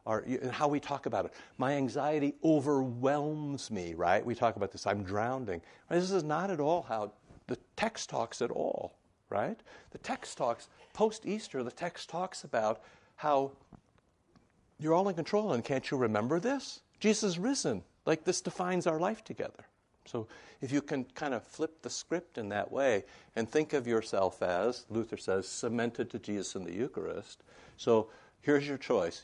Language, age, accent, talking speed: English, 60-79, American, 175 wpm